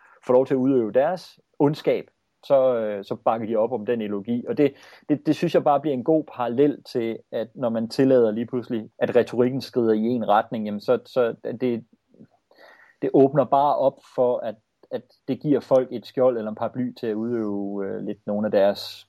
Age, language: 30-49, English